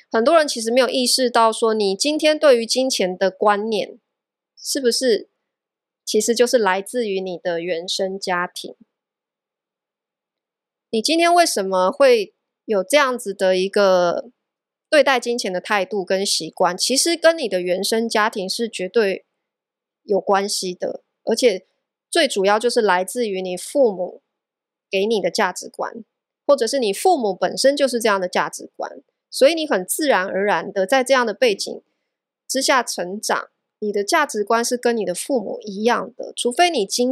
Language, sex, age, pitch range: Chinese, female, 20-39, 195-275 Hz